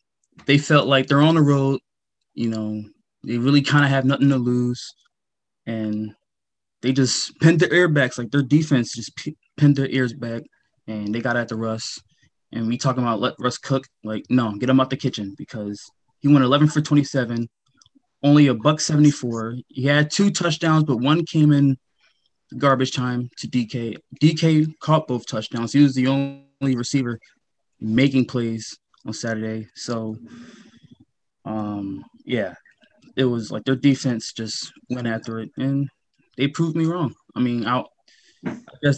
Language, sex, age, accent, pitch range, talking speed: English, male, 20-39, American, 115-145 Hz, 165 wpm